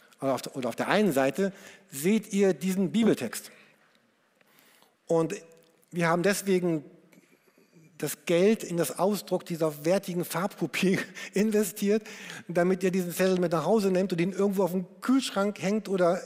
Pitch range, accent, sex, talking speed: 160-200 Hz, German, male, 140 wpm